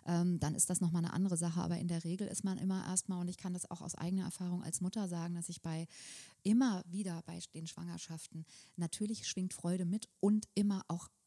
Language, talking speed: German, 220 wpm